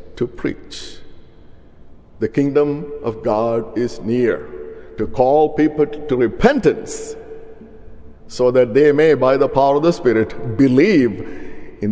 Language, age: English, 50-69